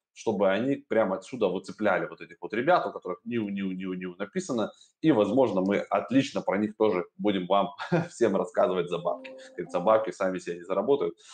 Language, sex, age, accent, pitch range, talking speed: Russian, male, 20-39, native, 100-140 Hz, 185 wpm